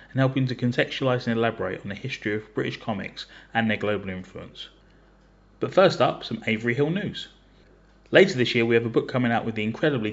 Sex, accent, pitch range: male, British, 110-135 Hz